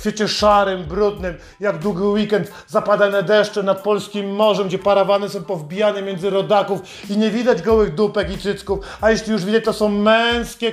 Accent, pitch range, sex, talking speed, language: native, 195-230 Hz, male, 180 wpm, Polish